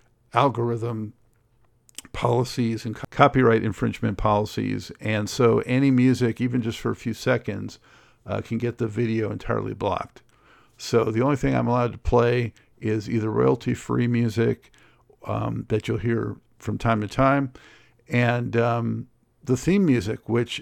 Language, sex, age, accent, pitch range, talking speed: English, male, 50-69, American, 115-130 Hz, 145 wpm